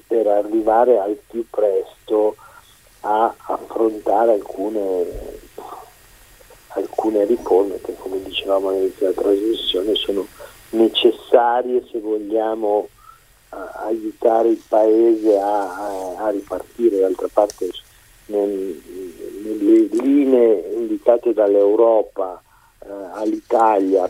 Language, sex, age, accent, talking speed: Italian, male, 50-69, native, 85 wpm